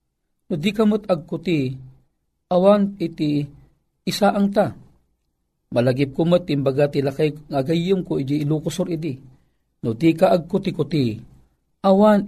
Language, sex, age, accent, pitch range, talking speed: Filipino, male, 50-69, native, 155-195 Hz, 115 wpm